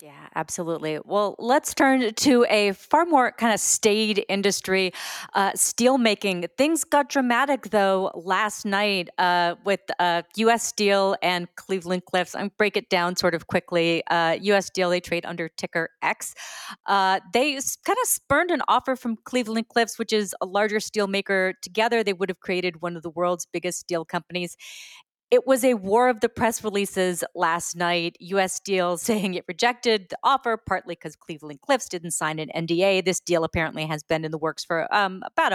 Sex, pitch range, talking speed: female, 175-230 Hz, 180 wpm